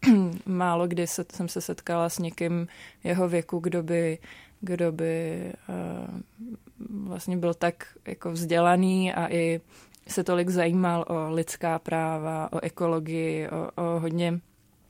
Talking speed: 125 wpm